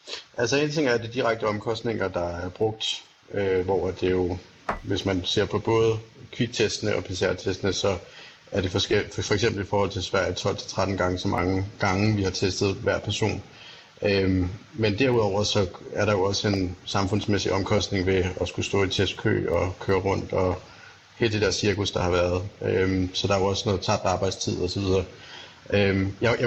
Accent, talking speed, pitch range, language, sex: native, 185 wpm, 100-115 Hz, Danish, male